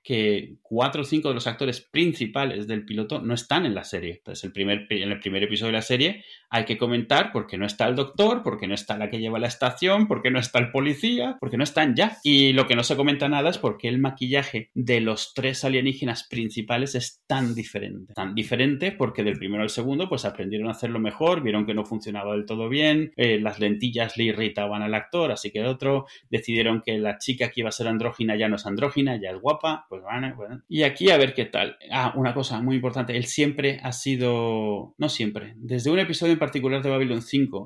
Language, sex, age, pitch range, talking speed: Spanish, male, 30-49, 110-140 Hz, 235 wpm